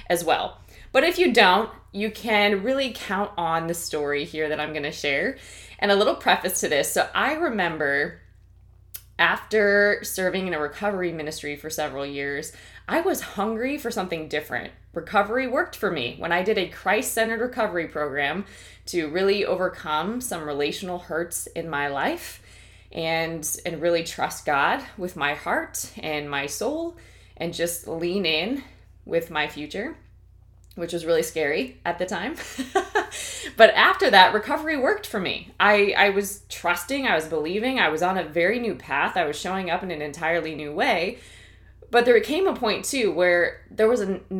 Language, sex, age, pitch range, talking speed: English, female, 20-39, 155-205 Hz, 170 wpm